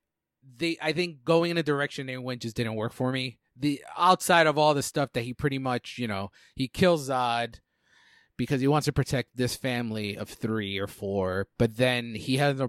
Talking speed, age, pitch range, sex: 215 wpm, 30-49, 110-150 Hz, male